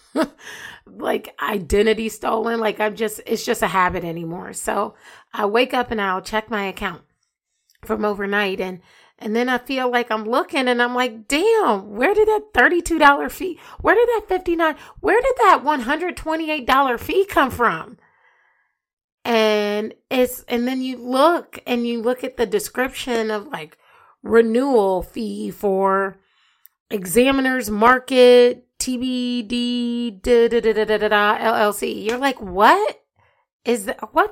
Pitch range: 215-295 Hz